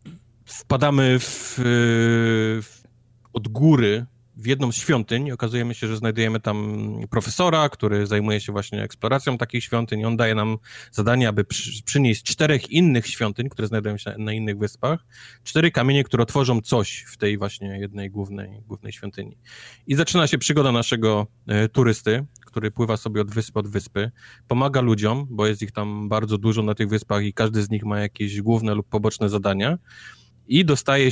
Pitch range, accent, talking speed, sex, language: 105-120 Hz, native, 160 wpm, male, Polish